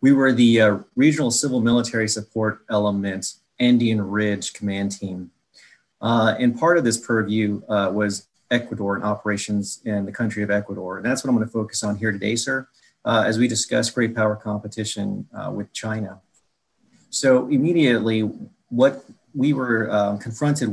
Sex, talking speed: male, 160 wpm